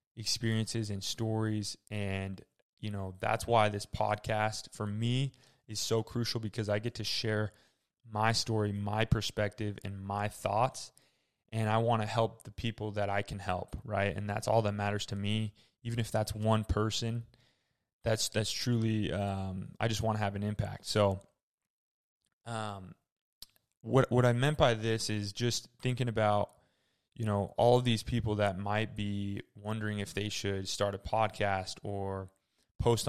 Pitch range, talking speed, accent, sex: 100-115 Hz, 165 wpm, American, male